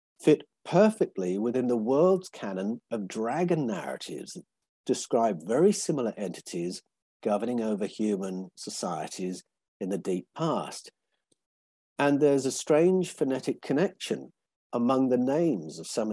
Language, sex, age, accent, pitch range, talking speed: English, male, 50-69, British, 105-145 Hz, 120 wpm